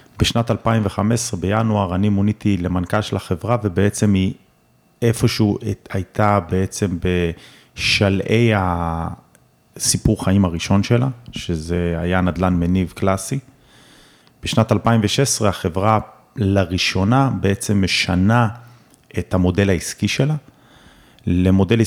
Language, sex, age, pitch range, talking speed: Hebrew, male, 30-49, 90-105 Hz, 95 wpm